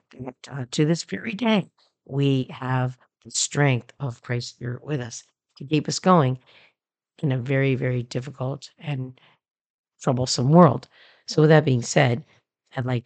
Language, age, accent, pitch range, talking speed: English, 50-69, American, 125-155 Hz, 145 wpm